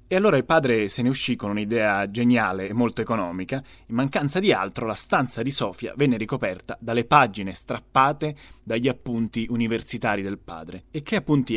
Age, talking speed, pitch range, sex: 20-39, 175 wpm, 100-135 Hz, male